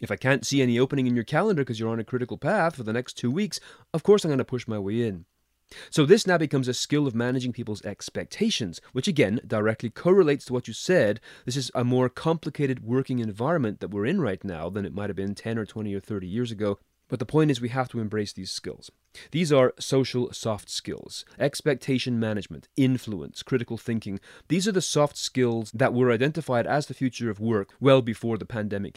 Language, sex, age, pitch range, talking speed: English, male, 30-49, 110-140 Hz, 225 wpm